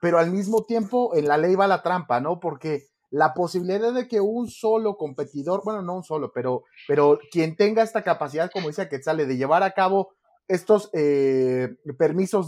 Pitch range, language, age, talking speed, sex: 150-195 Hz, Spanish, 30-49, 195 wpm, male